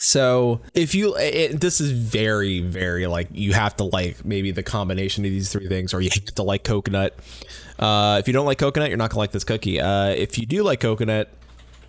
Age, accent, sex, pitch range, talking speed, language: 20-39, American, male, 100-140 Hz, 220 wpm, English